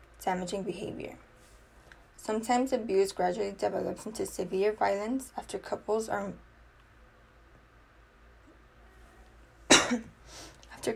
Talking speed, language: 70 wpm, English